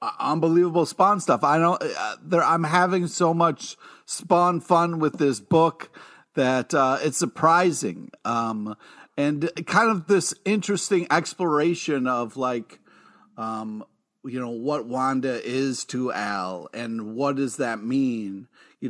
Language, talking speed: English, 135 wpm